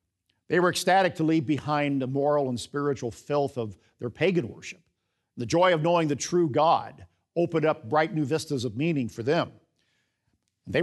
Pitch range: 115-155 Hz